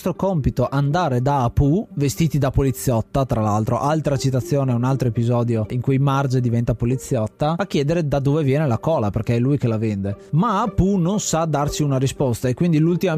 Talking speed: 190 wpm